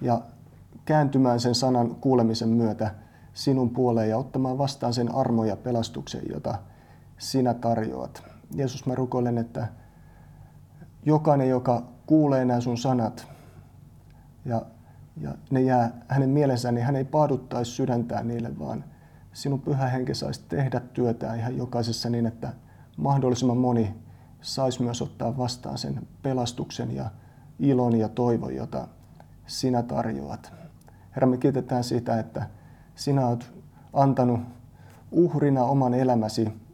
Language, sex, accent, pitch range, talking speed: Finnish, male, native, 115-130 Hz, 125 wpm